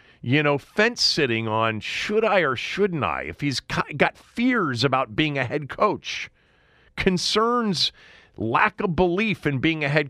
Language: English